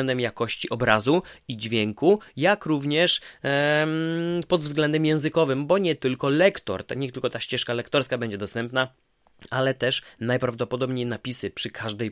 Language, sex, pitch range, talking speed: Polish, male, 110-135 Hz, 140 wpm